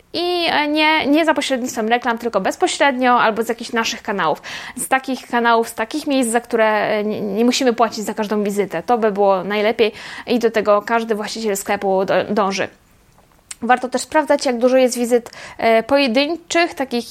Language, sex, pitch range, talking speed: Polish, female, 225-275 Hz, 165 wpm